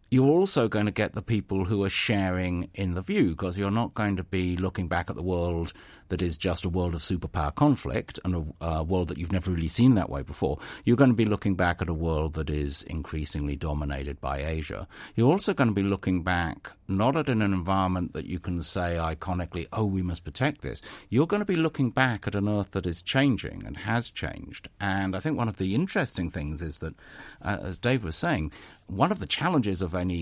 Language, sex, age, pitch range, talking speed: English, male, 60-79, 85-110 Hz, 230 wpm